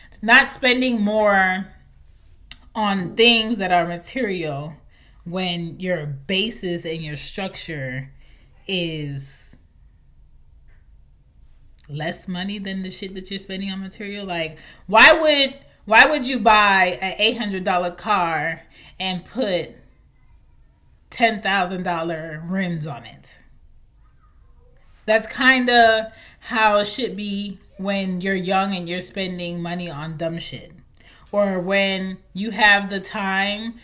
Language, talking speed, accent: English, 120 wpm, American